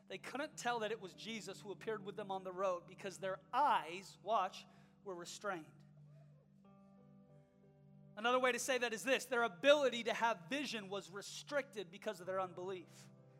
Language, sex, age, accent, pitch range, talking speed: English, male, 30-49, American, 205-330 Hz, 170 wpm